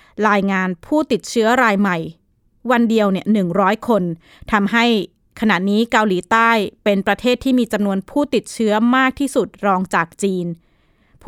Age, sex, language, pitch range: 20-39, female, Thai, 190-235 Hz